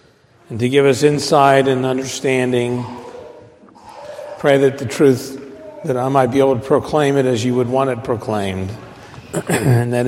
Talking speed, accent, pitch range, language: 160 wpm, American, 120-155 Hz, English